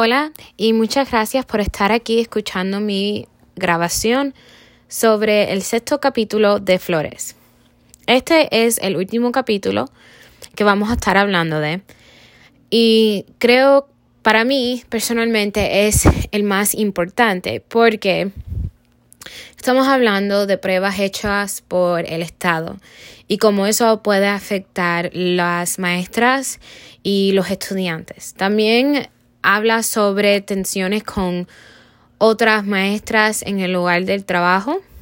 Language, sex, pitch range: Spanish, female, 180-225 Hz